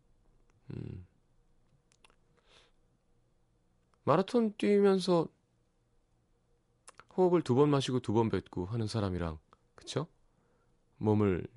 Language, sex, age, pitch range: Korean, male, 30-49, 85-135 Hz